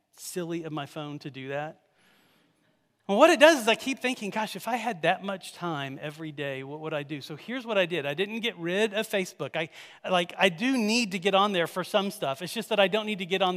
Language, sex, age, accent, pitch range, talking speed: English, male, 40-59, American, 160-220 Hz, 260 wpm